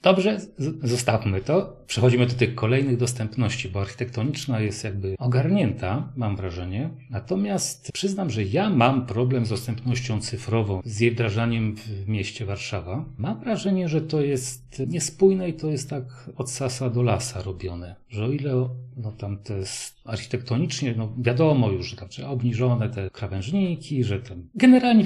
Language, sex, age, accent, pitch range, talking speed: Polish, male, 40-59, native, 110-140 Hz, 155 wpm